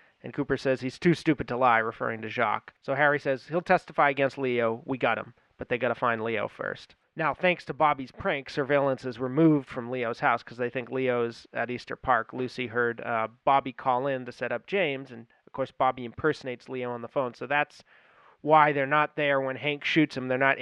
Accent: American